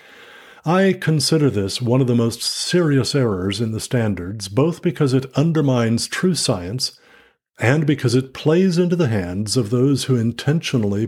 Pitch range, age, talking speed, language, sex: 110-140 Hz, 50-69, 155 wpm, English, male